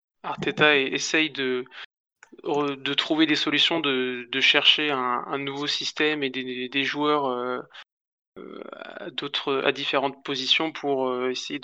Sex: male